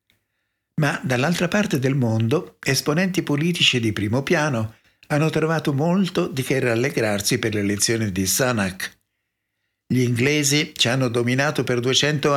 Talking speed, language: 130 wpm, Italian